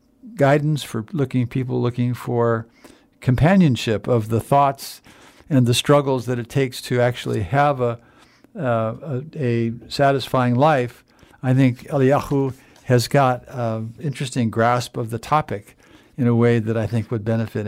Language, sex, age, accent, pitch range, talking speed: English, male, 60-79, American, 115-135 Hz, 150 wpm